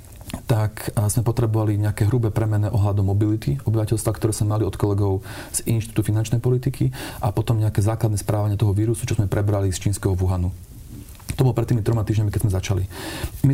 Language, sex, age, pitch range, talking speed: Slovak, male, 40-59, 100-115 Hz, 180 wpm